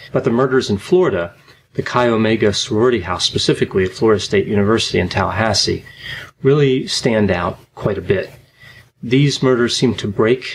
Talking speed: 160 wpm